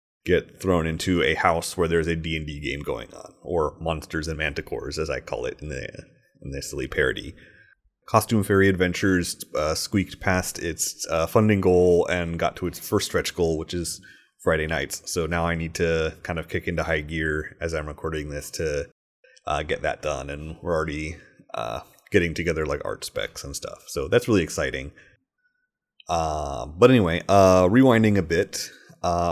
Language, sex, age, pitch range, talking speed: English, male, 30-49, 80-95 Hz, 185 wpm